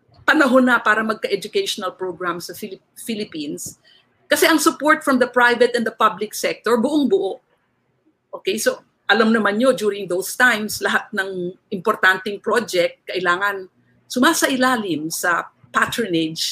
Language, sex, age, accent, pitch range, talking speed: Filipino, female, 50-69, native, 195-260 Hz, 125 wpm